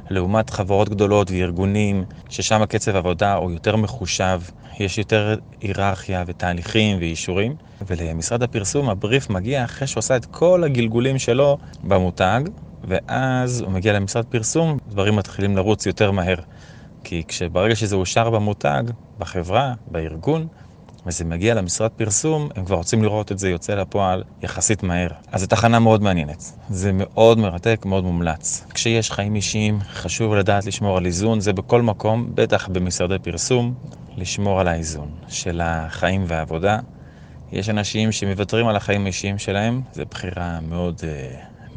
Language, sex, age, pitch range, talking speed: Hebrew, male, 30-49, 90-110 Hz, 140 wpm